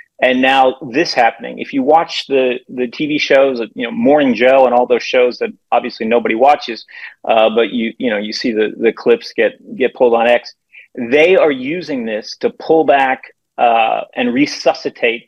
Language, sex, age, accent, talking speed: English, male, 40-59, American, 190 wpm